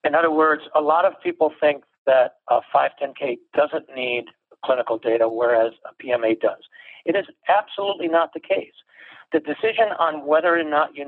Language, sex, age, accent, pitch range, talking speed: English, male, 60-79, American, 125-160 Hz, 175 wpm